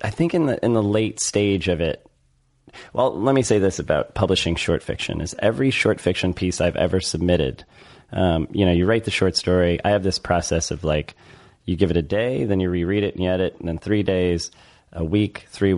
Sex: male